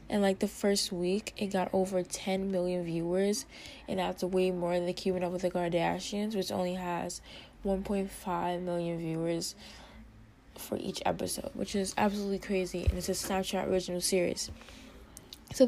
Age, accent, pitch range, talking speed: 20-39, American, 175-205 Hz, 160 wpm